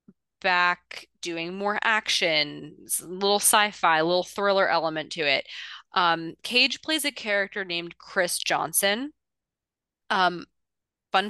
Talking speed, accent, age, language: 120 wpm, American, 20-39, English